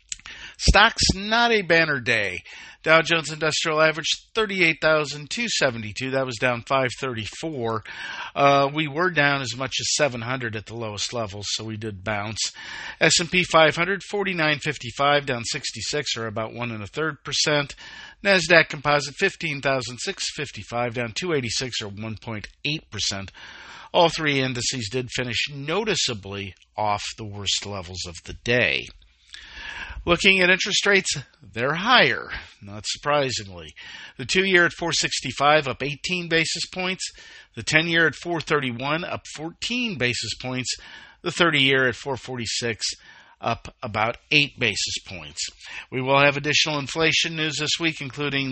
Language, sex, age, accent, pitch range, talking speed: English, male, 50-69, American, 115-160 Hz, 125 wpm